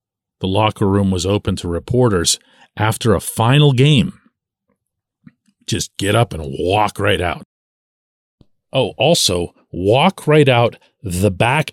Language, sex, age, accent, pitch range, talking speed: English, male, 40-59, American, 100-150 Hz, 130 wpm